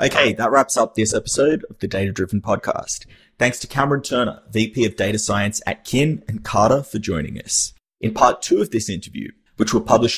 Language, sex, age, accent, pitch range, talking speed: English, male, 30-49, Australian, 100-130 Hz, 205 wpm